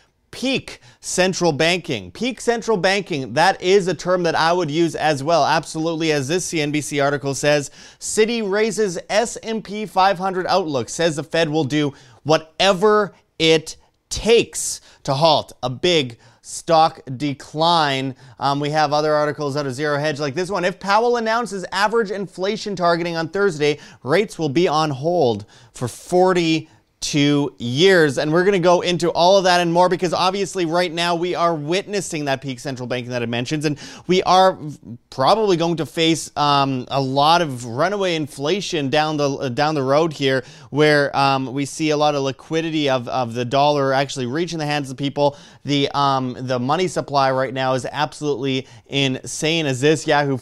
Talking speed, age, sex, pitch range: 175 wpm, 30-49, male, 135-175 Hz